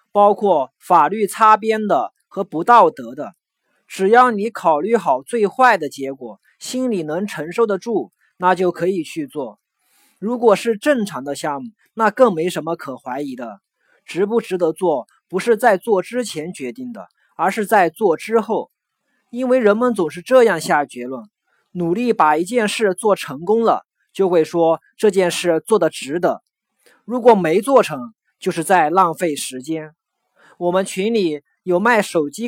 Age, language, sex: 20-39, Chinese, male